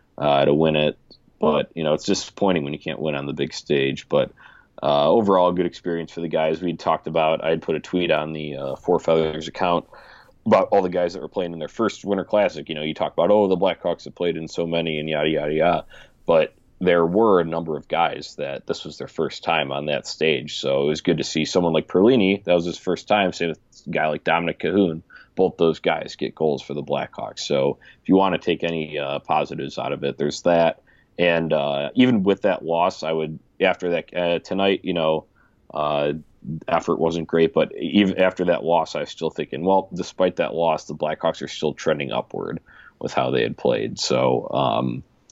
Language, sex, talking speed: English, male, 225 wpm